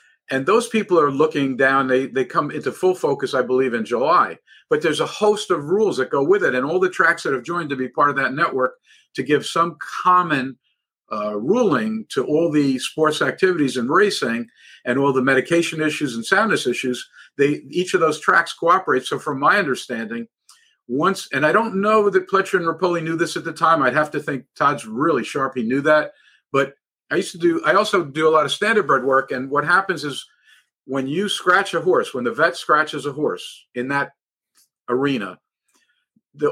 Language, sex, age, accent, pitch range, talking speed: English, male, 50-69, American, 135-190 Hz, 205 wpm